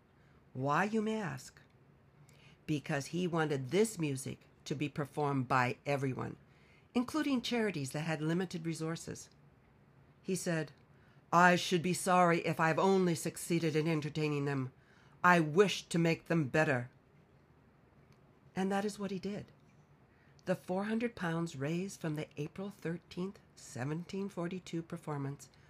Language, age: English, 60-79